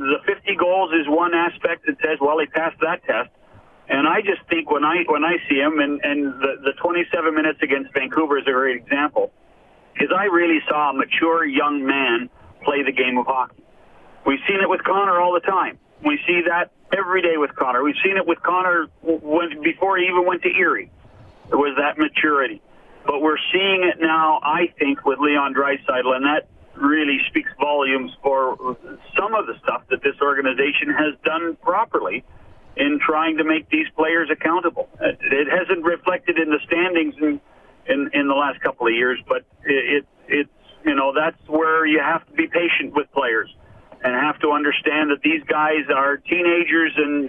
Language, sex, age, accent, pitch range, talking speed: English, male, 50-69, American, 145-180 Hz, 185 wpm